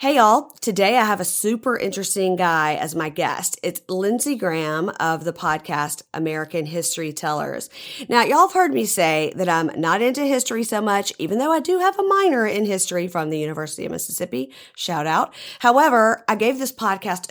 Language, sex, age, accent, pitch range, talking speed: English, female, 40-59, American, 160-225 Hz, 190 wpm